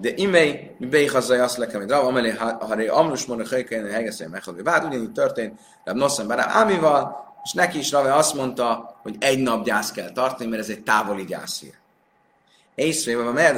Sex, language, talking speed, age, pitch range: male, Hungarian, 185 wpm, 30-49, 125-195 Hz